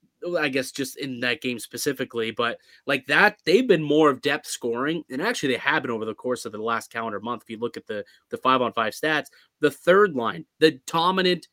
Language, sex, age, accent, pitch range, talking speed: English, male, 20-39, American, 125-160 Hz, 230 wpm